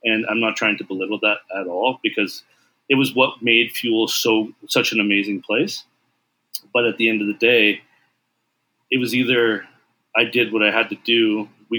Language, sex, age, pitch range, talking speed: English, male, 40-59, 110-140 Hz, 195 wpm